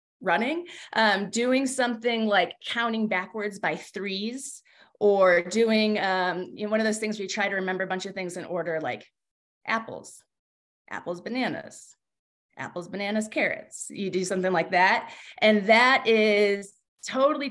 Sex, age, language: female, 30-49, English